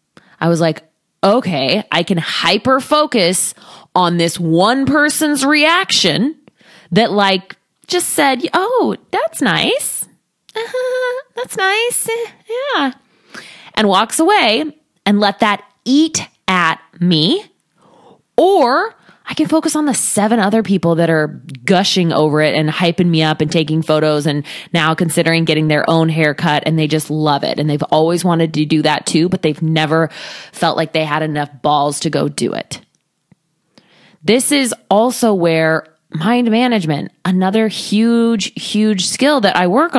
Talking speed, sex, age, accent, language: 150 wpm, female, 20-39, American, English